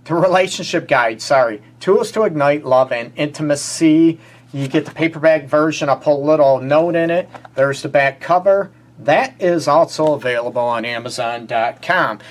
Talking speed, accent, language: 155 wpm, American, English